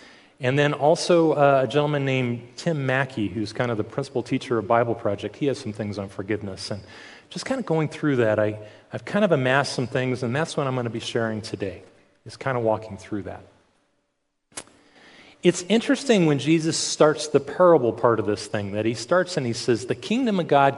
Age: 40-59